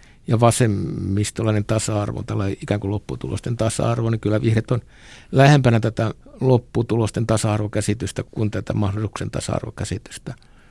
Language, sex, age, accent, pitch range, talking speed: Finnish, male, 60-79, native, 105-120 Hz, 110 wpm